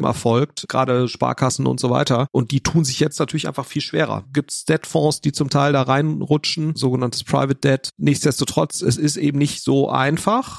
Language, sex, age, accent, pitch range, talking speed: German, male, 40-59, German, 130-155 Hz, 185 wpm